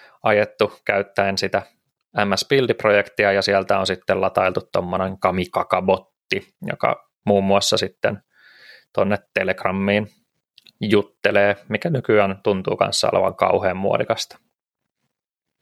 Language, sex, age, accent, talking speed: Finnish, male, 20-39, native, 100 wpm